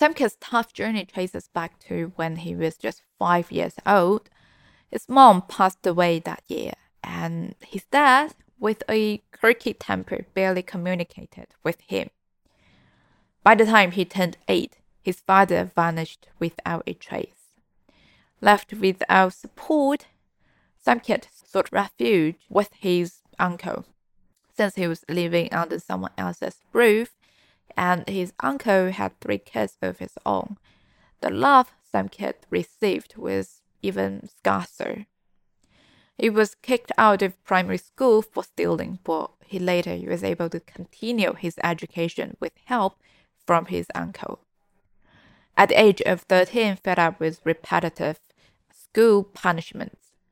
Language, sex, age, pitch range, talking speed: English, female, 20-39, 170-215 Hz, 130 wpm